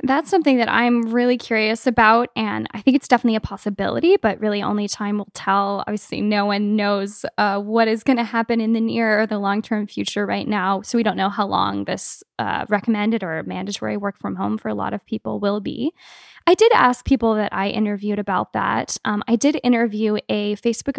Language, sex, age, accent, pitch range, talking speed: English, female, 10-29, American, 205-240 Hz, 215 wpm